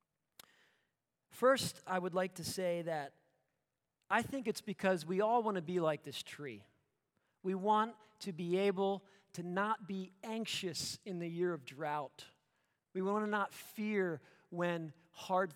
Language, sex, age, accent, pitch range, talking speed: English, male, 40-59, American, 155-200 Hz, 155 wpm